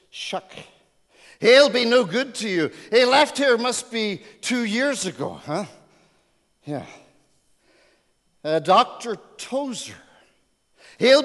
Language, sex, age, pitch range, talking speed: English, male, 50-69, 185-245 Hz, 110 wpm